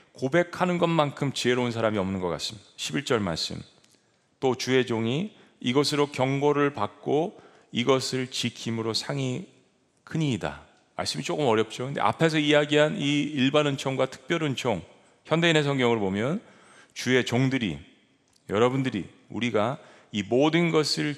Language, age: Korean, 40-59